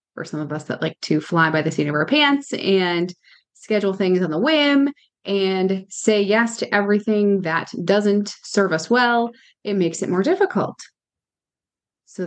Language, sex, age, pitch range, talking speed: English, female, 20-39, 180-225 Hz, 175 wpm